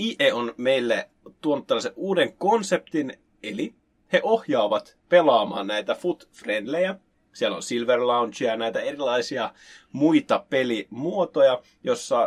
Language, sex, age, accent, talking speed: Finnish, male, 30-49, native, 110 wpm